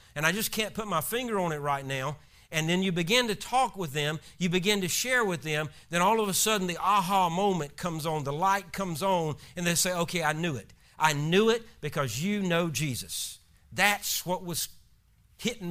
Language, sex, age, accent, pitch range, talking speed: English, male, 50-69, American, 125-180 Hz, 220 wpm